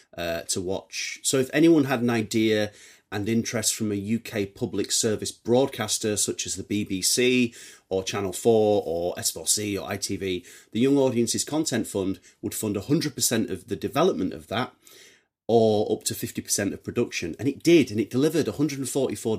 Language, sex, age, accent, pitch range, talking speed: English, male, 30-49, British, 105-130 Hz, 165 wpm